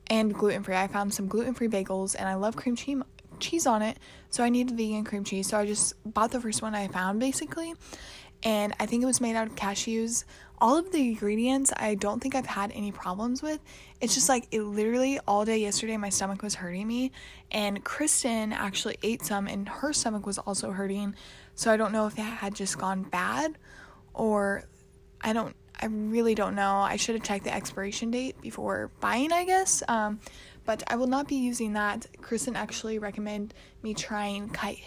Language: English